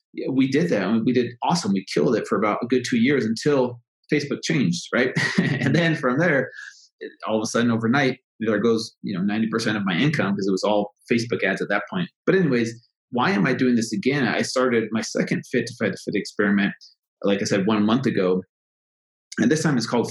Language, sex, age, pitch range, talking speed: English, male, 30-49, 110-140 Hz, 235 wpm